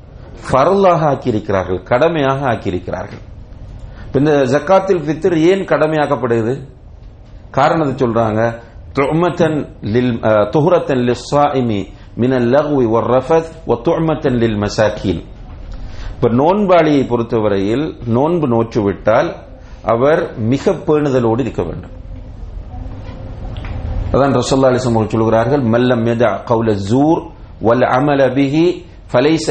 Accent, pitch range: Indian, 105-140 Hz